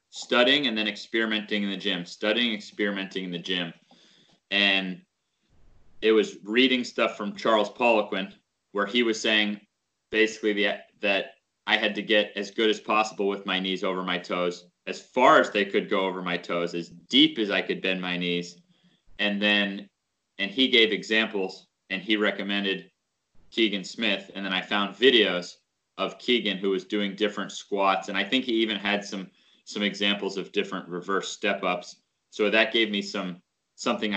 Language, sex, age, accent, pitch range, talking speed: English, male, 30-49, American, 95-105 Hz, 175 wpm